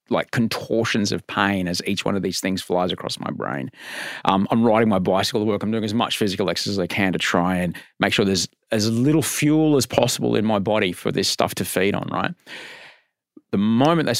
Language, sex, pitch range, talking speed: English, male, 90-125 Hz, 230 wpm